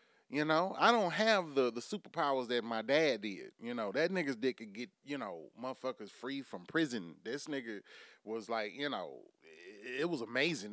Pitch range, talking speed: 115-165 Hz, 195 wpm